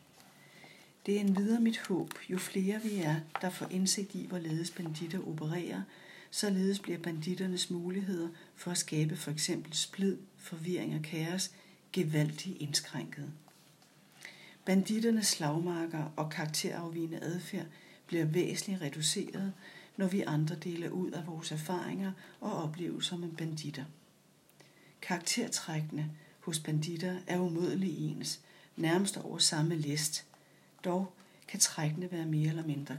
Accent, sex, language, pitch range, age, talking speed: Danish, female, English, 160-190 Hz, 60-79, 125 wpm